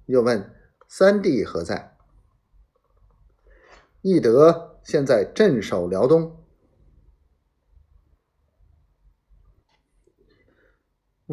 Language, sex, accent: Chinese, male, native